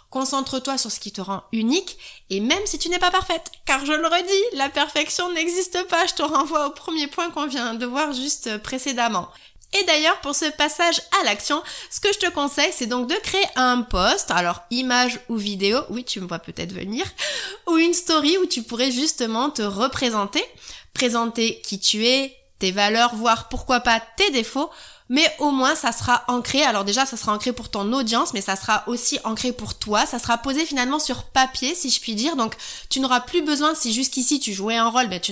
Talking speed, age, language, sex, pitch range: 215 wpm, 20-39, French, female, 230-295 Hz